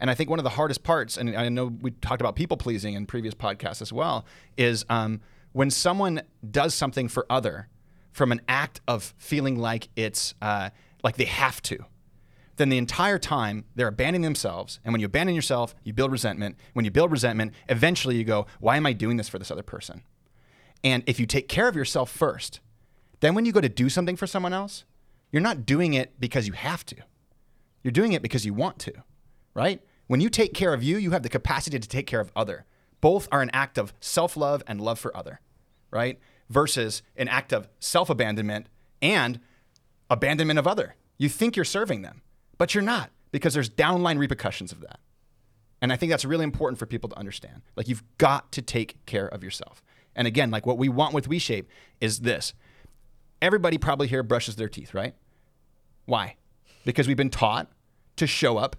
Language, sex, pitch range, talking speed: English, male, 115-145 Hz, 200 wpm